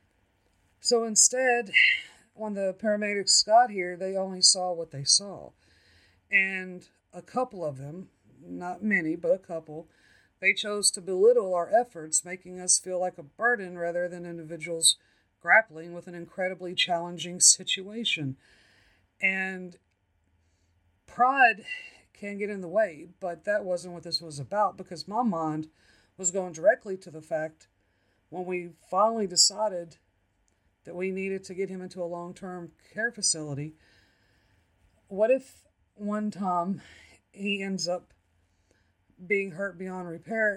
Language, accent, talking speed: English, American, 140 wpm